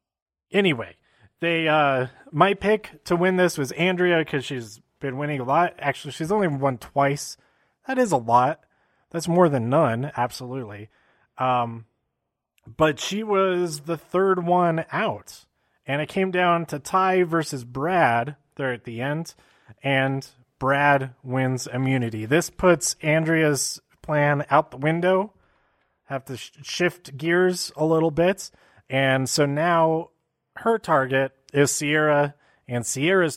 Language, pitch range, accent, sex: English, 130-165 Hz, American, male